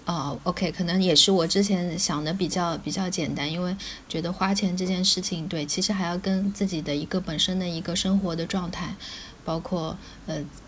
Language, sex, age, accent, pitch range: Chinese, female, 20-39, native, 170-200 Hz